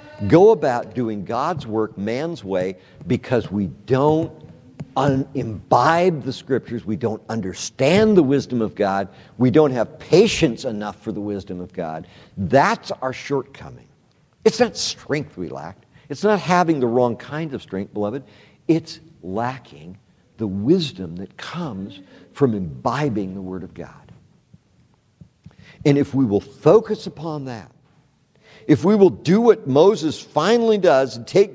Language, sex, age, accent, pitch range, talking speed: English, male, 60-79, American, 110-170 Hz, 145 wpm